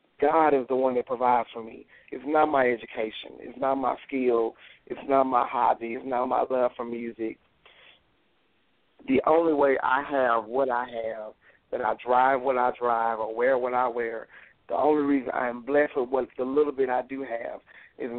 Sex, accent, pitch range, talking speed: male, American, 120-140 Hz, 200 wpm